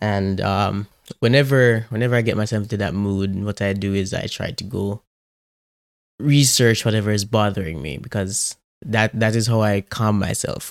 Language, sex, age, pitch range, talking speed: English, male, 20-39, 100-110 Hz, 175 wpm